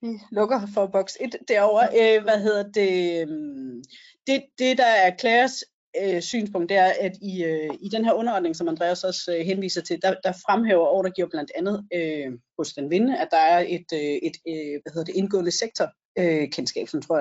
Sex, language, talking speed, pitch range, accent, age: female, Danish, 185 wpm, 170-220 Hz, native, 30-49